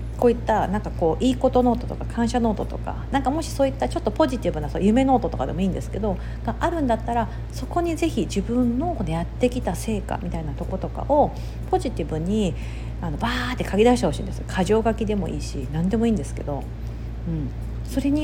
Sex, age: female, 50-69